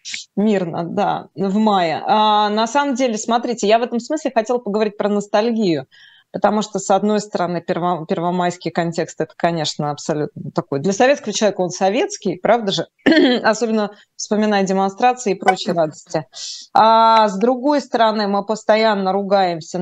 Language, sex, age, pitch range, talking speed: Russian, female, 20-39, 175-215 Hz, 140 wpm